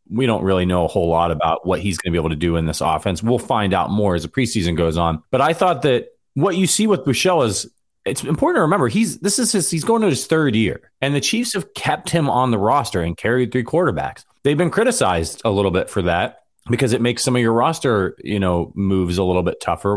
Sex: male